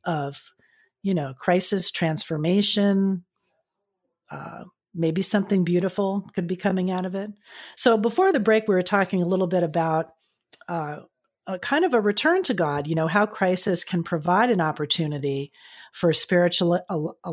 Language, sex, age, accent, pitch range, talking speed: English, female, 40-59, American, 160-205 Hz, 155 wpm